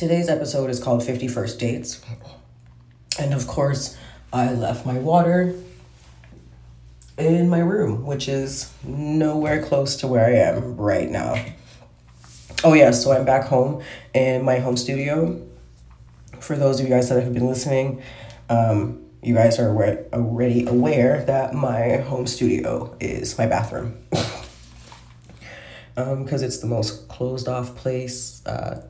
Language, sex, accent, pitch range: English, female, American, 90-135 Hz